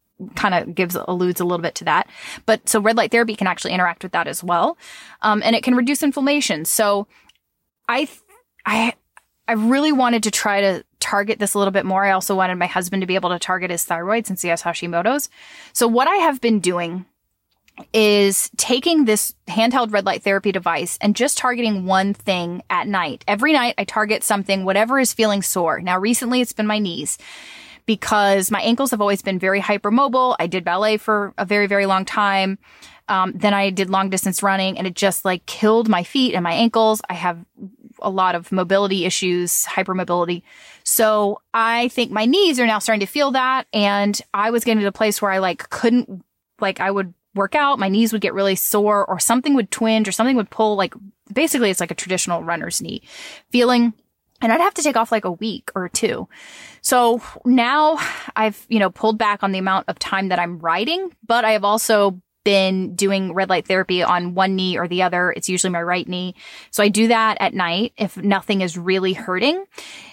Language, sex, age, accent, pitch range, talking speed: English, female, 20-39, American, 185-230 Hz, 210 wpm